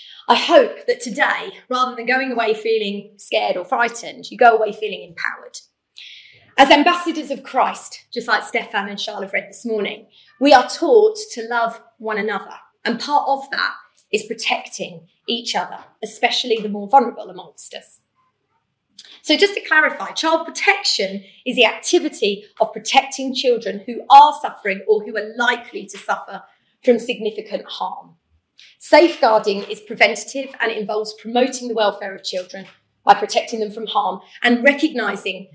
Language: English